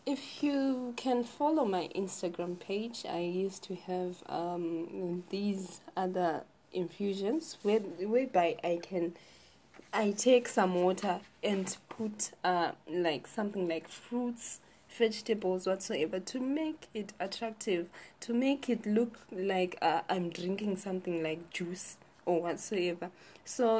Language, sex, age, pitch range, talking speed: English, female, 20-39, 175-225 Hz, 125 wpm